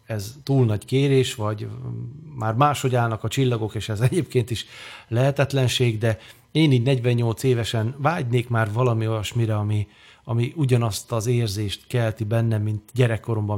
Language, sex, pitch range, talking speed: Hungarian, male, 110-130 Hz, 145 wpm